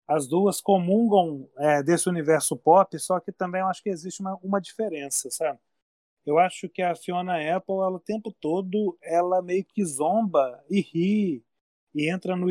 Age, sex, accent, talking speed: 30-49, male, Brazilian, 180 wpm